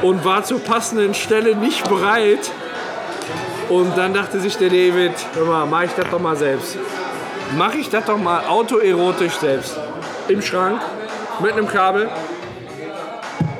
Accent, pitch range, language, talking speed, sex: German, 160-210 Hz, German, 135 wpm, male